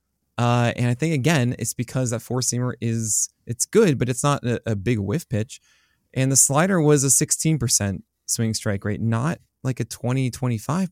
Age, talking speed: 20-39, 200 wpm